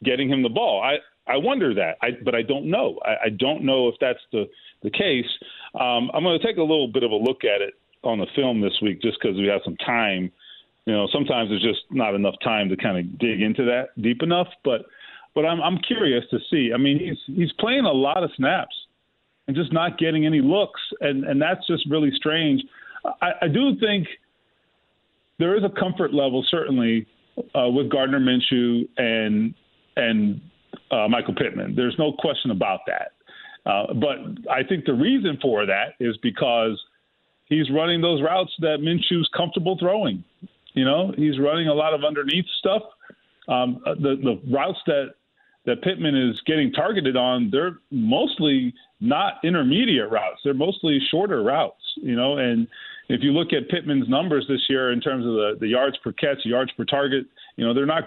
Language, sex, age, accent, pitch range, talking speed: English, male, 40-59, American, 125-180 Hz, 195 wpm